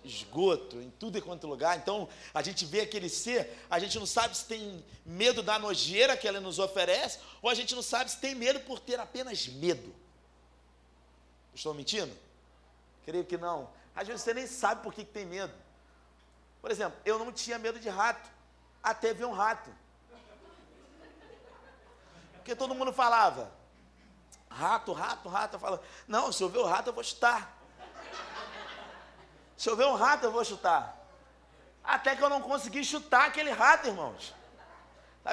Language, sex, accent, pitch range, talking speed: Portuguese, male, Brazilian, 150-240 Hz, 165 wpm